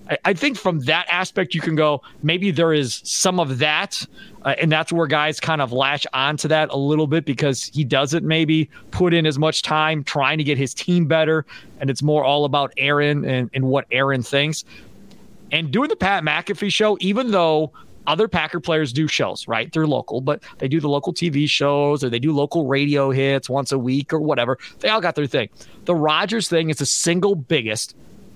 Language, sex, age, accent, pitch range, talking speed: English, male, 30-49, American, 140-185 Hz, 210 wpm